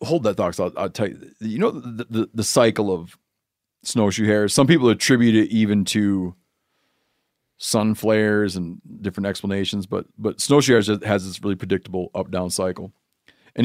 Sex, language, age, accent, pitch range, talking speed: male, English, 40-59, American, 100-125 Hz, 170 wpm